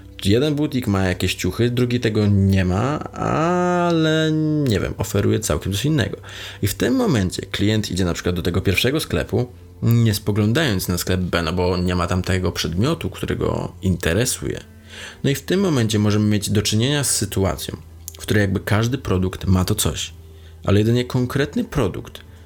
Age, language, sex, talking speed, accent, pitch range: 20-39, Polish, male, 175 wpm, native, 90-115 Hz